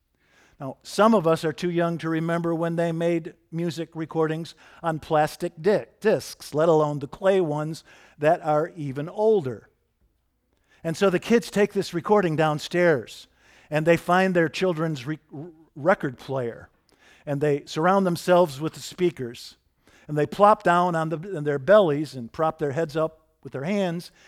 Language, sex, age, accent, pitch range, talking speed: English, male, 50-69, American, 155-185 Hz, 155 wpm